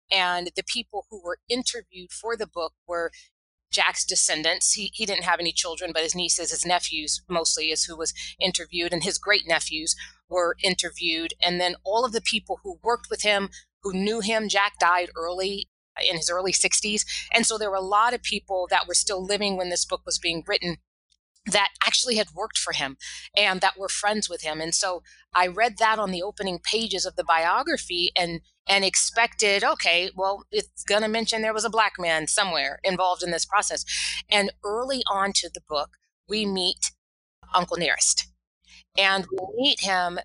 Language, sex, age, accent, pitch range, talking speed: English, female, 30-49, American, 170-210 Hz, 190 wpm